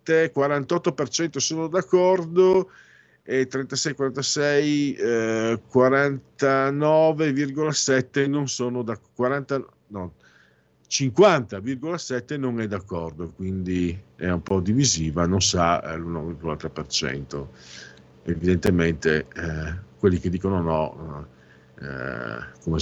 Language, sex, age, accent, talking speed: Italian, male, 50-69, native, 80 wpm